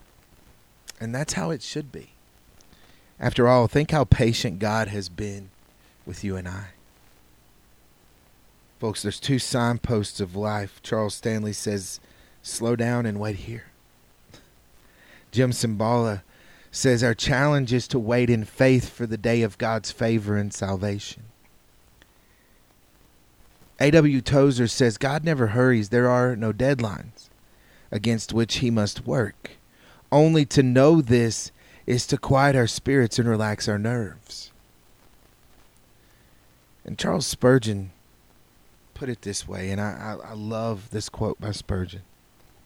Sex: male